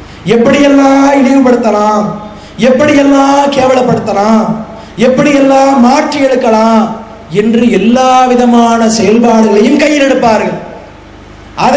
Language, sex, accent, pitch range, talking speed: English, male, Indian, 225-270 Hz, 100 wpm